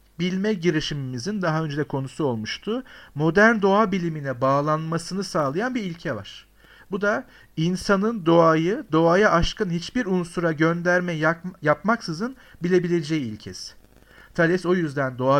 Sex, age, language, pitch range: male, 50-69, Turkish, 140-210 Hz